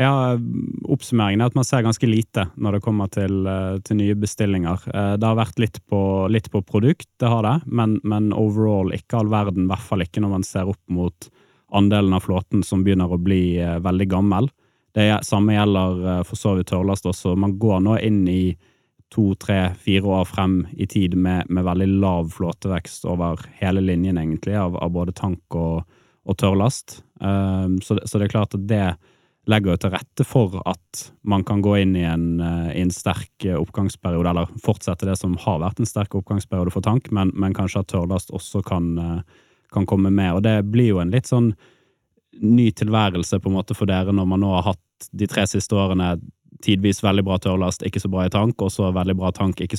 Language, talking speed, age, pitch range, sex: English, 195 wpm, 20-39, 90-105 Hz, male